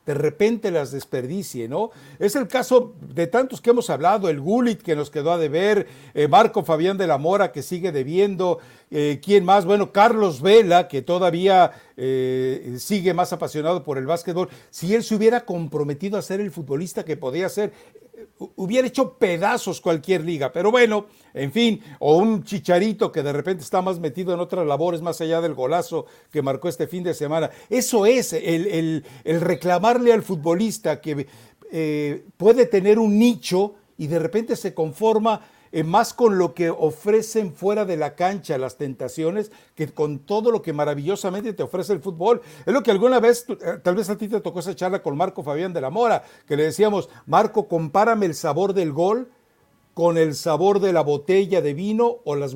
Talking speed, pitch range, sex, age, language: 185 wpm, 155-215 Hz, male, 60-79, Spanish